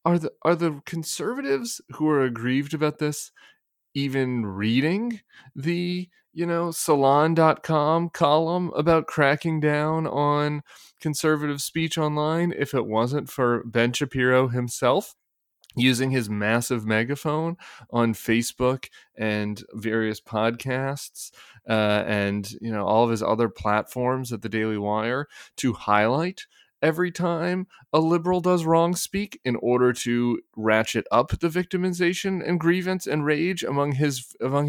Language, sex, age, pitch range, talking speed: English, male, 30-49, 110-155 Hz, 130 wpm